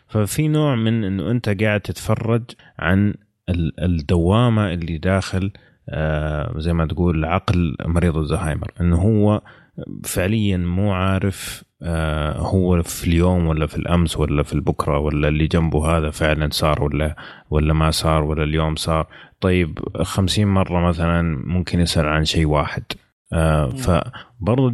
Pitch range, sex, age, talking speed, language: 80-95 Hz, male, 30-49, 130 wpm, Arabic